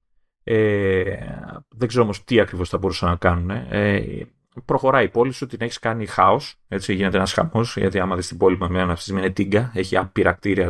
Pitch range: 95-140 Hz